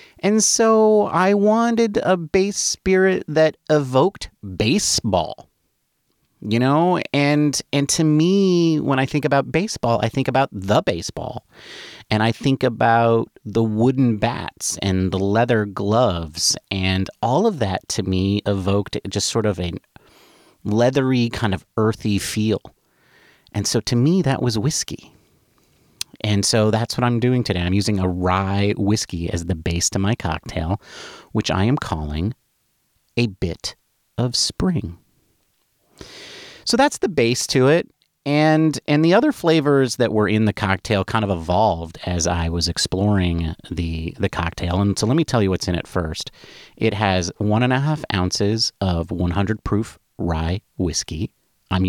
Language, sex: English, male